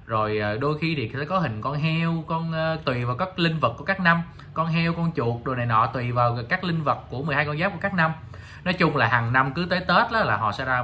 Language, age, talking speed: Vietnamese, 20-39, 275 wpm